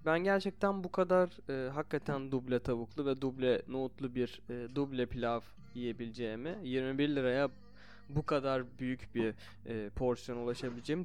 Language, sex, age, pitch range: Turkish, male, 20-39, 115-160 Hz